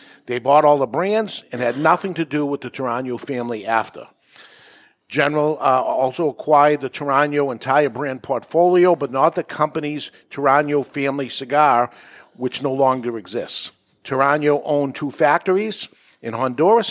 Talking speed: 145 wpm